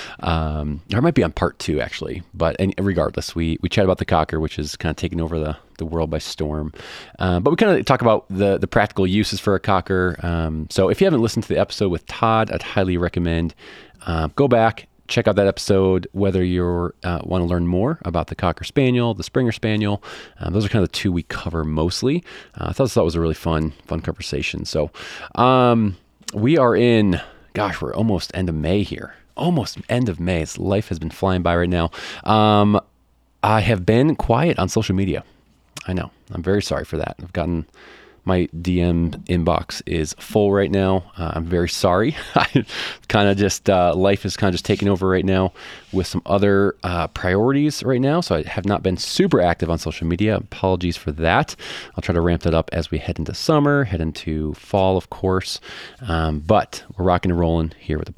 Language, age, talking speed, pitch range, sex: English, 30-49, 215 wpm, 85-100 Hz, male